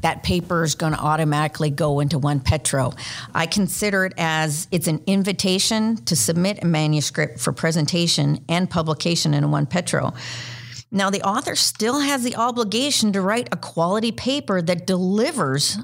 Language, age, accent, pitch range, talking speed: English, 50-69, American, 155-210 Hz, 160 wpm